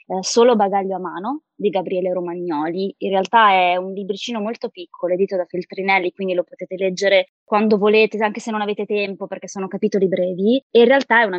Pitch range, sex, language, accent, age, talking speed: 180-220 Hz, female, Italian, native, 20-39, 195 wpm